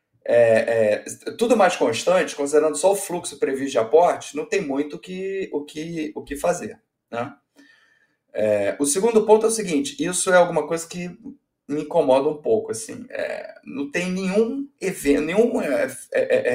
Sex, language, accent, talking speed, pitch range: male, Portuguese, Brazilian, 180 wpm, 145-210 Hz